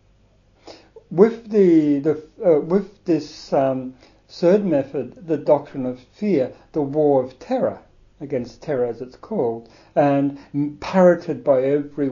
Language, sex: English, male